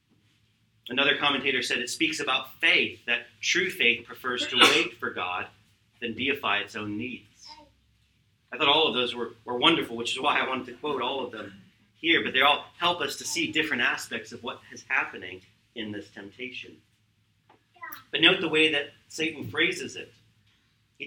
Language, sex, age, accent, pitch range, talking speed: English, male, 40-59, American, 110-155 Hz, 180 wpm